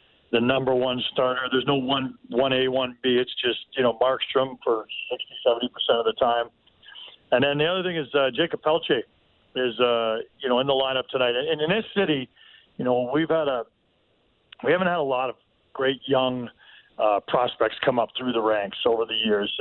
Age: 50-69